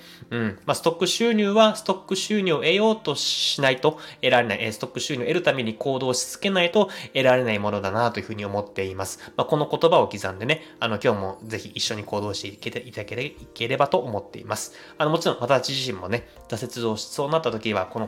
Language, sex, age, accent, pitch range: Japanese, male, 20-39, native, 110-165 Hz